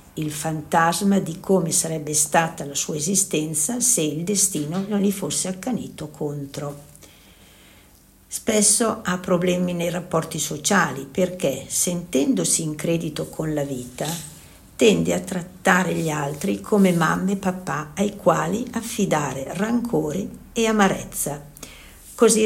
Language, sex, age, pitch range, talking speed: Italian, female, 60-79, 150-195 Hz, 125 wpm